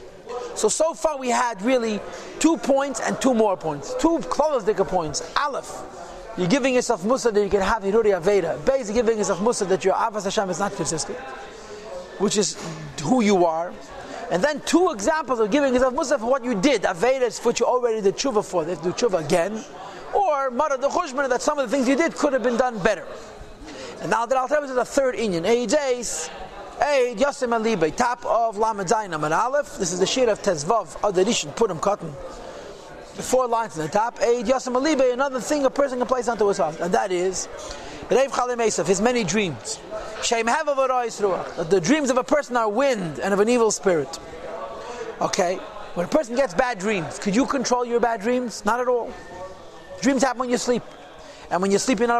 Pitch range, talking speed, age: 200-265 Hz, 210 wpm, 40-59